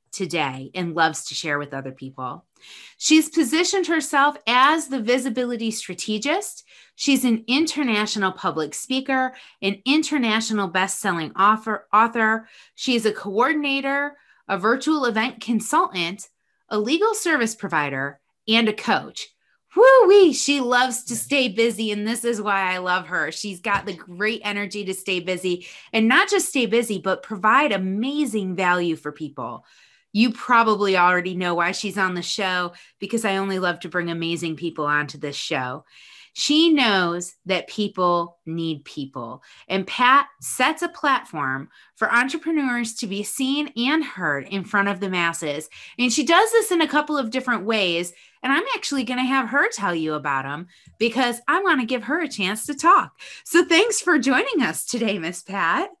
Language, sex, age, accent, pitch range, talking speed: English, female, 30-49, American, 180-275 Hz, 165 wpm